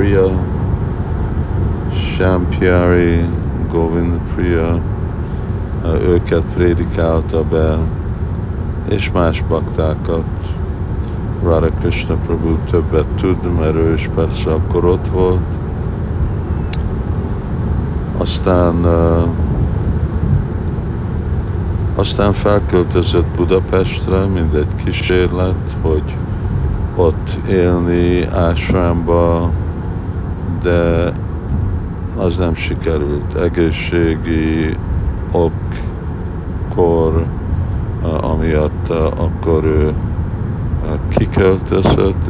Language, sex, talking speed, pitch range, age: Hungarian, male, 60 wpm, 80-95 Hz, 60-79